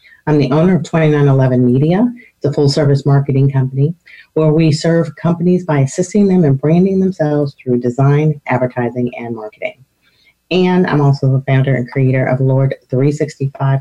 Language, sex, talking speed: English, female, 150 wpm